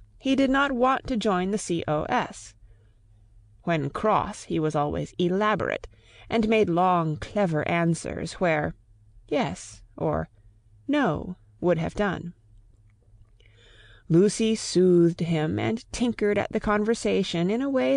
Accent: American